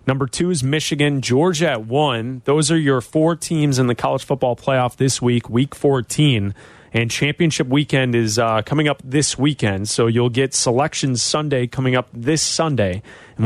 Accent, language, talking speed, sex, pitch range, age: American, English, 180 wpm, male, 125-155 Hz, 30-49